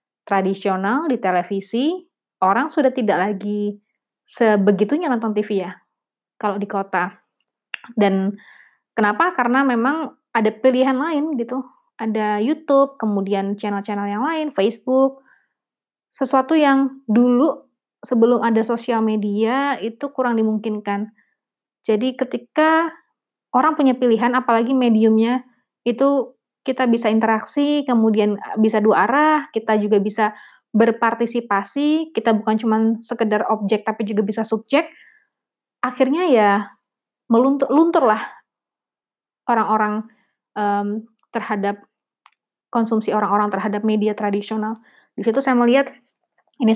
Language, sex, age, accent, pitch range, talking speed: English, female, 20-39, Indonesian, 210-260 Hz, 110 wpm